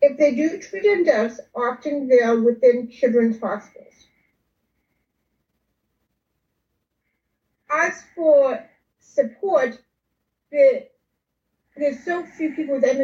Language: English